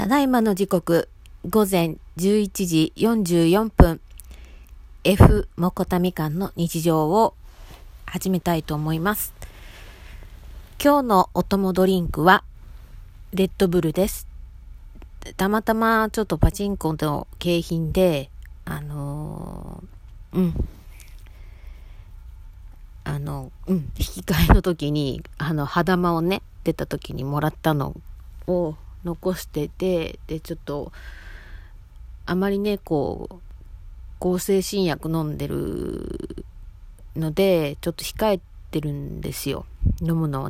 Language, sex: Japanese, female